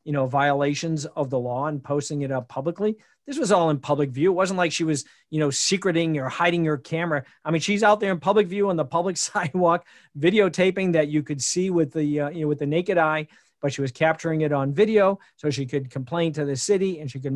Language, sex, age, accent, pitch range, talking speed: English, male, 50-69, American, 135-170 Hz, 250 wpm